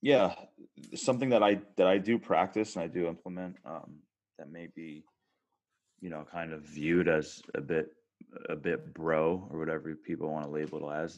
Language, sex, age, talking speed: English, male, 20-39, 190 wpm